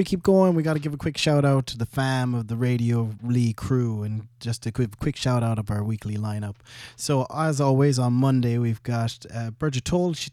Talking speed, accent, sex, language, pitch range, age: 230 wpm, American, male, English, 110-130 Hz, 20-39